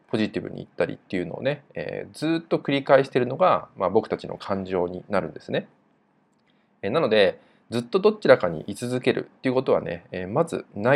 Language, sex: Japanese, male